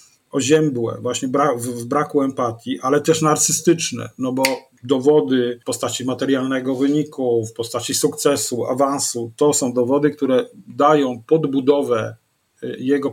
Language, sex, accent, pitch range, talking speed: Polish, male, native, 130-160 Hz, 120 wpm